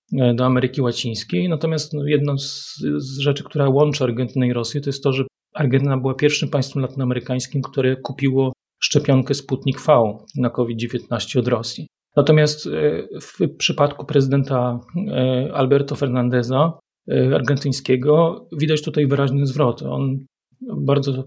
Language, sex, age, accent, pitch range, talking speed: Polish, male, 30-49, native, 130-150 Hz, 125 wpm